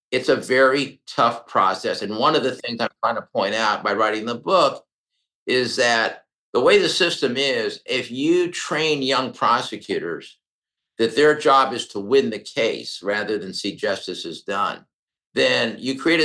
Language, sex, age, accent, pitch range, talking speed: English, male, 50-69, American, 120-165 Hz, 175 wpm